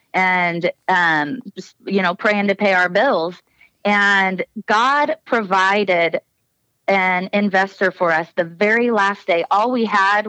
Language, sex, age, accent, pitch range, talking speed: English, female, 30-49, American, 175-210 Hz, 140 wpm